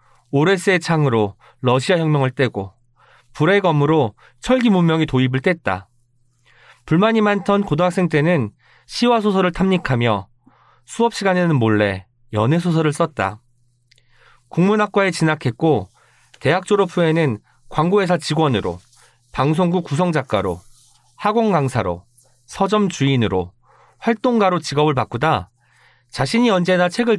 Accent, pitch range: native, 120-180 Hz